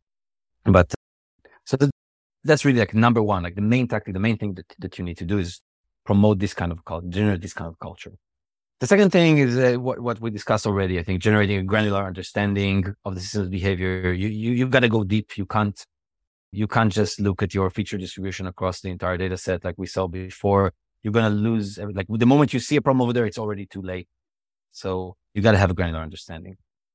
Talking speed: 230 wpm